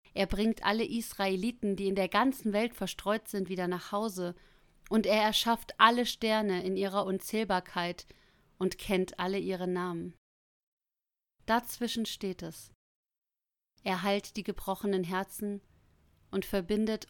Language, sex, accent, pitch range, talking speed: German, female, German, 180-215 Hz, 130 wpm